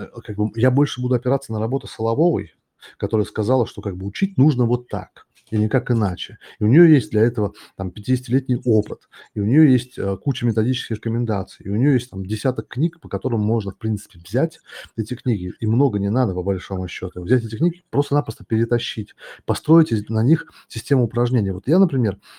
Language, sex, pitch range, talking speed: Russian, male, 105-130 Hz, 180 wpm